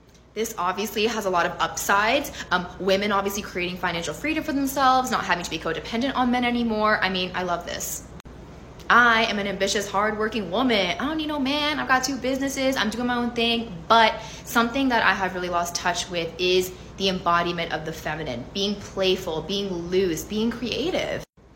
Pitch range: 180-235 Hz